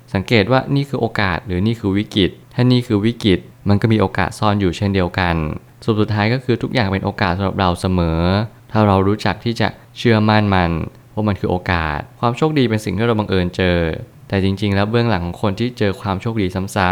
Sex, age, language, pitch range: male, 20-39, Thai, 95-115 Hz